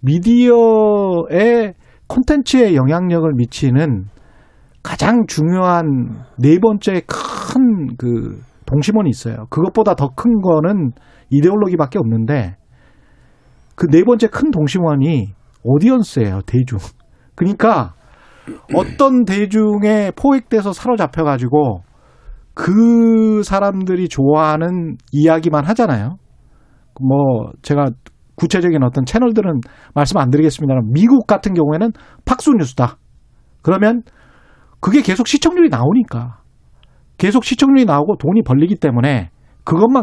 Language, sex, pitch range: Korean, male, 135-220 Hz